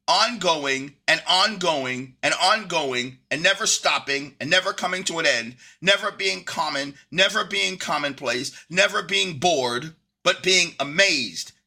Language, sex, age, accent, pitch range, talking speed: English, male, 40-59, American, 150-205 Hz, 135 wpm